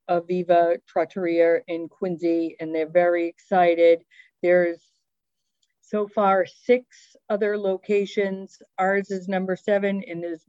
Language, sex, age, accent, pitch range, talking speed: English, female, 50-69, American, 160-185 Hz, 115 wpm